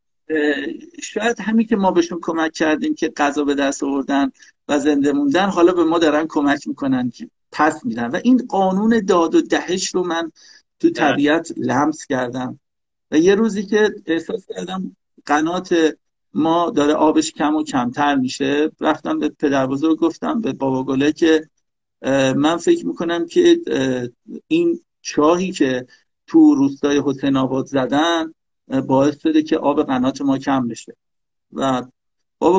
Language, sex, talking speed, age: Persian, male, 145 wpm, 50-69